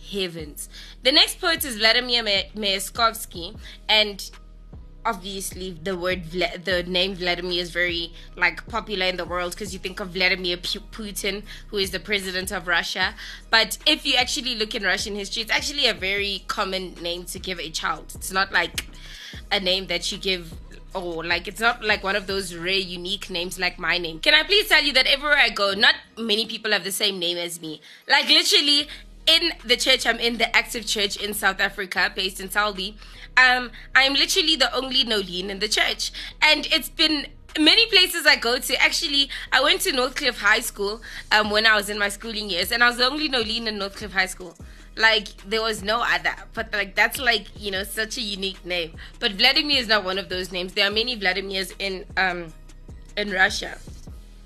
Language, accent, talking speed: English, South African, 205 wpm